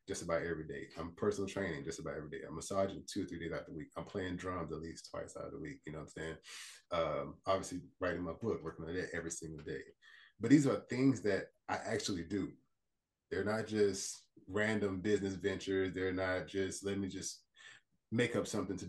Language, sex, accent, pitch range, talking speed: English, male, American, 90-110 Hz, 225 wpm